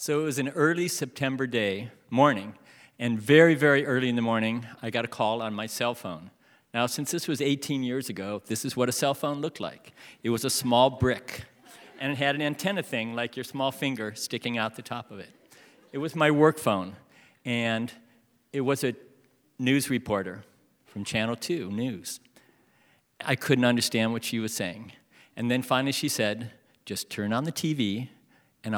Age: 50-69